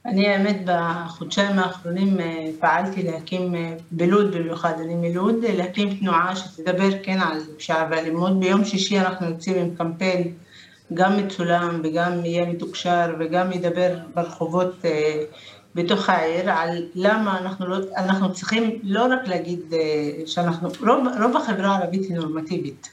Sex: female